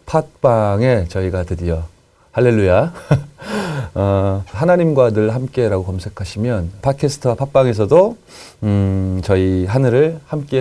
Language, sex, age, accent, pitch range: Korean, male, 30-49, native, 95-130 Hz